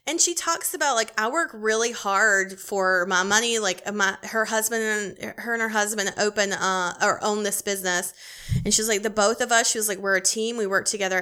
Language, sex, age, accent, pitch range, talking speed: English, female, 20-39, American, 195-245 Hz, 230 wpm